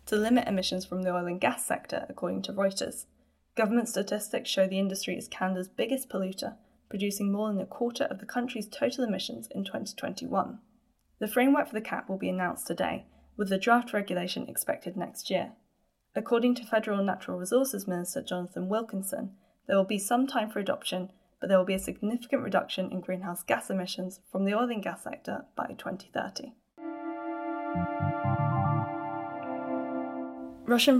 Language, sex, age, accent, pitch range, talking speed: English, female, 10-29, British, 185-230 Hz, 165 wpm